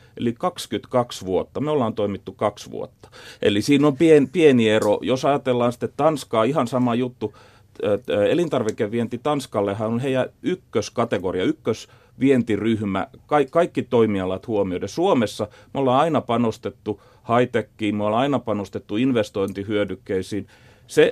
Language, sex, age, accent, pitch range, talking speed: Finnish, male, 30-49, native, 105-125 Hz, 120 wpm